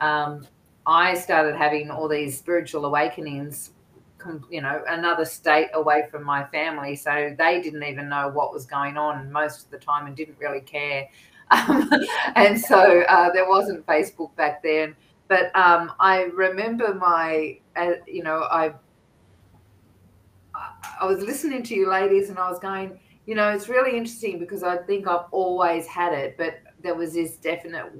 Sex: female